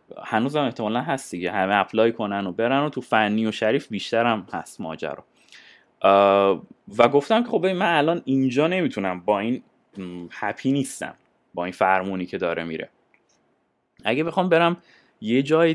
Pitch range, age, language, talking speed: 105-140 Hz, 20-39, Persian, 150 wpm